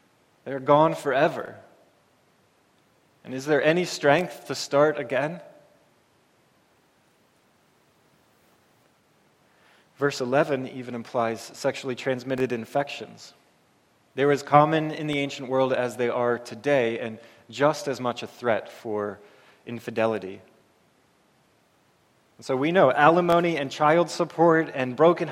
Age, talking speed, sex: 20-39, 115 wpm, male